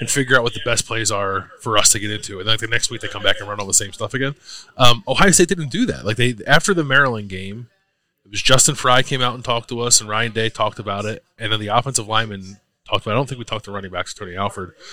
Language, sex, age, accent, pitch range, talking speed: English, male, 20-39, American, 105-135 Hz, 300 wpm